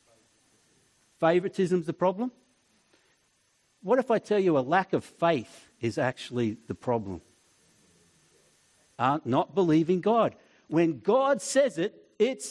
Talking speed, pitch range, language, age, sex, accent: 125 wpm, 165-230 Hz, English, 60-79, male, Australian